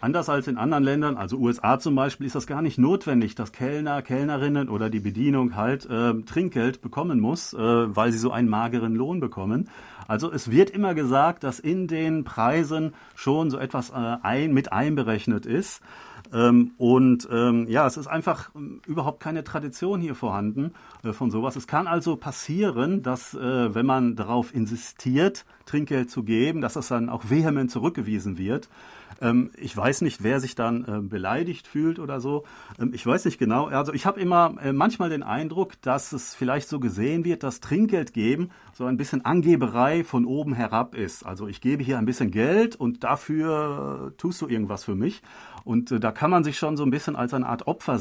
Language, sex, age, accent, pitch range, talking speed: German, male, 40-59, German, 120-150 Hz, 185 wpm